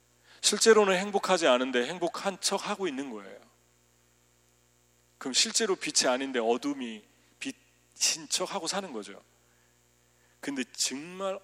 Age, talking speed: 40-59, 105 wpm